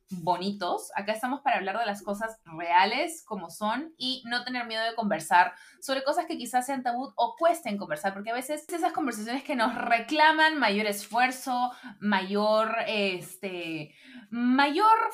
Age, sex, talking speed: 20-39, female, 155 wpm